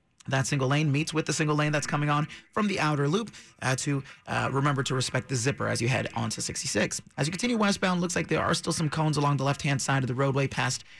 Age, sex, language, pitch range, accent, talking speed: 30-49, male, English, 135-170 Hz, American, 260 wpm